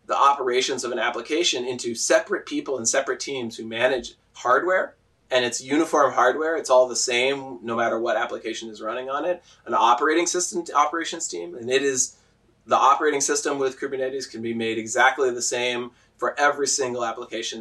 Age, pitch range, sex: 20-39, 115-165 Hz, male